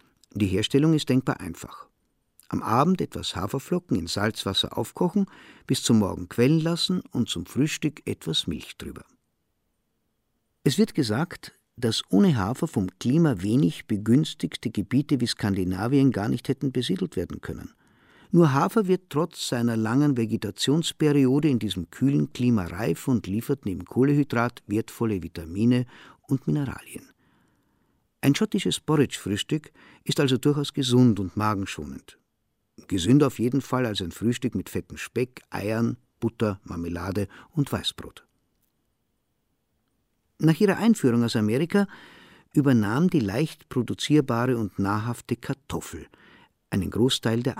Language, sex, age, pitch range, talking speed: German, male, 50-69, 105-145 Hz, 130 wpm